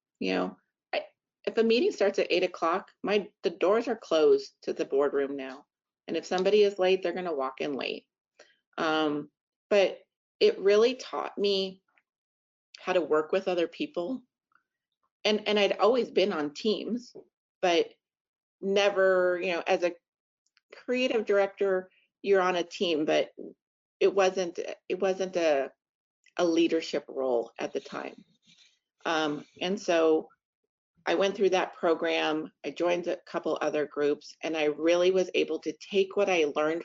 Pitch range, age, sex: 155-200 Hz, 30-49, female